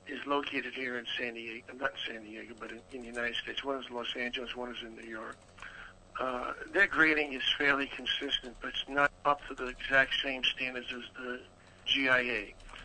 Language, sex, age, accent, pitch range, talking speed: English, male, 60-79, American, 120-150 Hz, 195 wpm